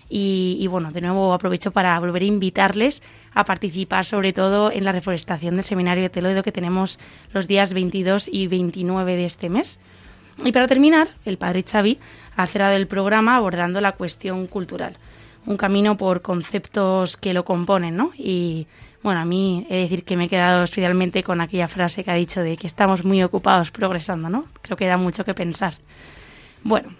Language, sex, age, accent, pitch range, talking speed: Spanish, female, 20-39, Spanish, 180-215 Hz, 185 wpm